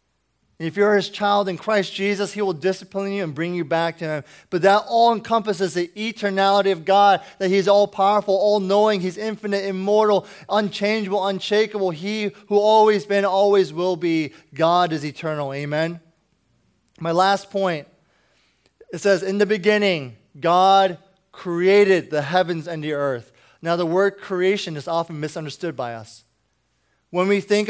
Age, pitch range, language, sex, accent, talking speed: 20-39, 165-205 Hz, English, male, American, 155 wpm